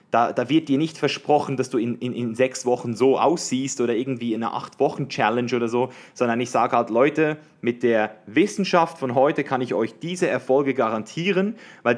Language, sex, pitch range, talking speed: German, male, 115-145 Hz, 195 wpm